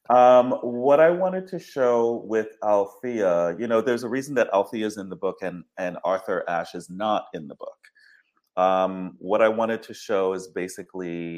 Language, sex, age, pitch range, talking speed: English, male, 30-49, 90-110 Hz, 190 wpm